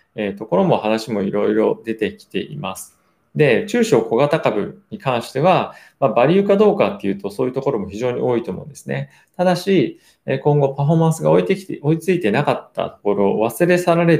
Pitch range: 100-165 Hz